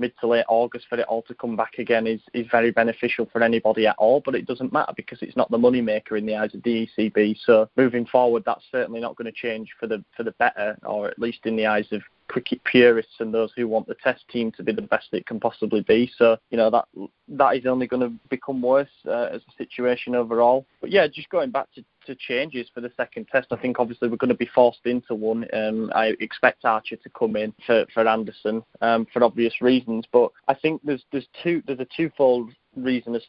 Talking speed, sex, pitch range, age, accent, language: 245 wpm, male, 110-125 Hz, 20-39, British, English